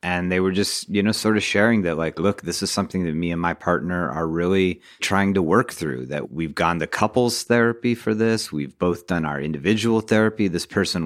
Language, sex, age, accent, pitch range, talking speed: English, male, 30-49, American, 85-105 Hz, 230 wpm